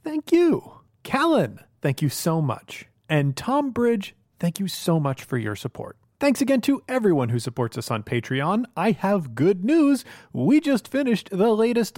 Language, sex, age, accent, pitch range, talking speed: English, male, 30-49, American, 140-210 Hz, 175 wpm